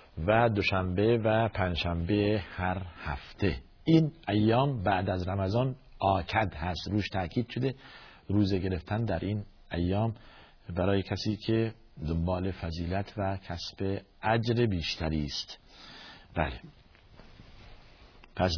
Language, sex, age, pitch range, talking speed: Persian, male, 50-69, 90-115 Hz, 105 wpm